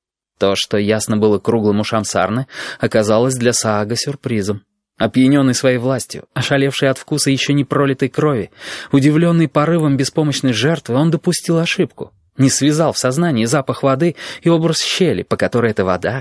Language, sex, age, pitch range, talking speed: Russian, male, 20-39, 110-150 Hz, 150 wpm